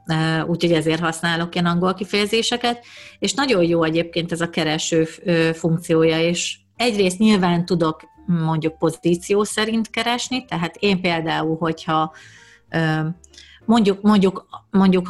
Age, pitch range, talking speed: 40-59, 160-190 Hz, 115 wpm